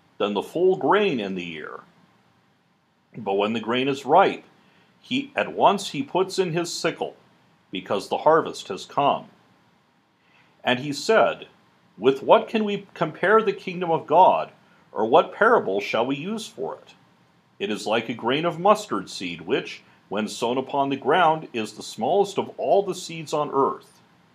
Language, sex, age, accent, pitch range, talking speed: English, male, 50-69, American, 115-190 Hz, 170 wpm